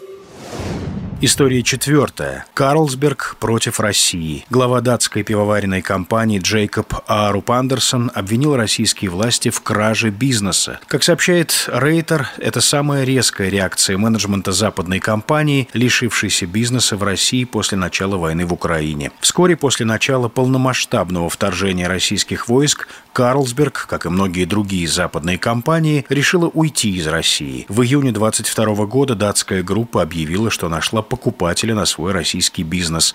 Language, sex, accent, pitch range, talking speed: Russian, male, native, 95-135 Hz, 125 wpm